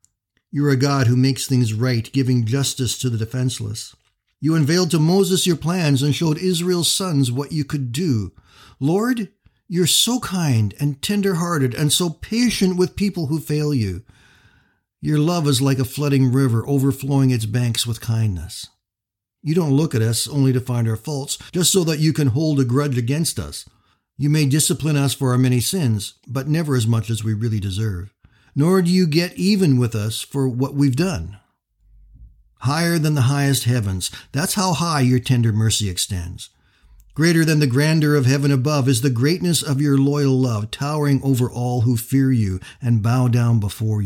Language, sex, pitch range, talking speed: English, male, 115-155 Hz, 185 wpm